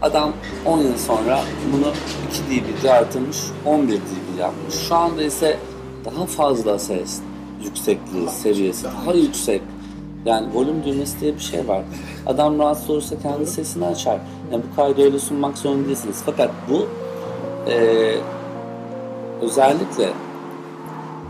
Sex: male